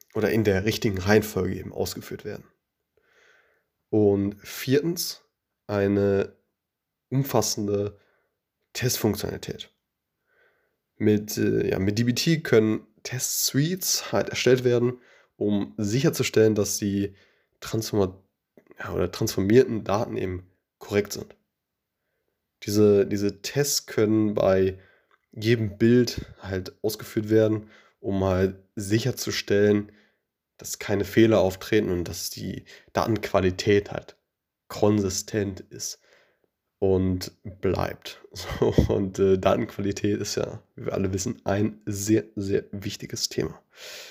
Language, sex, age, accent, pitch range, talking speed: German, male, 20-39, German, 100-120 Hz, 100 wpm